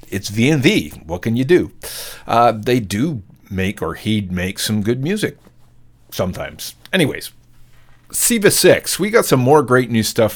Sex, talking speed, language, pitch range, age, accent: male, 155 wpm, English, 100-120 Hz, 50-69, American